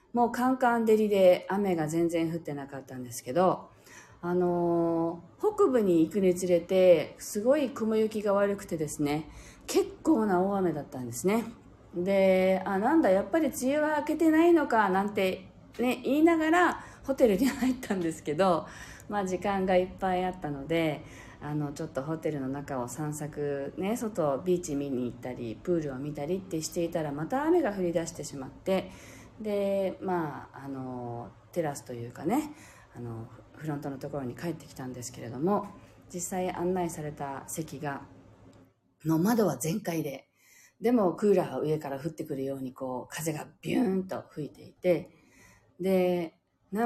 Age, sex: 40-59, female